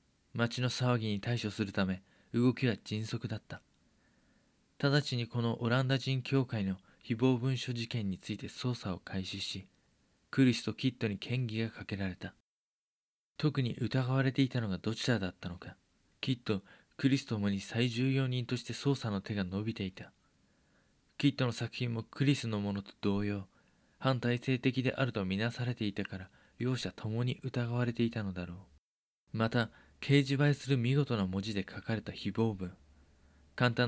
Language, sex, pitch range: Japanese, male, 100-130 Hz